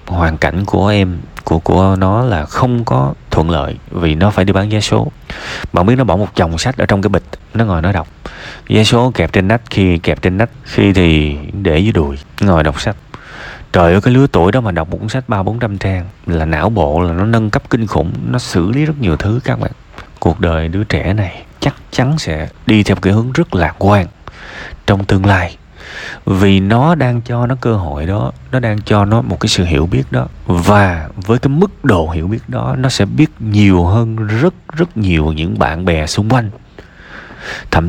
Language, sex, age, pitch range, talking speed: Vietnamese, male, 20-39, 85-115 Hz, 220 wpm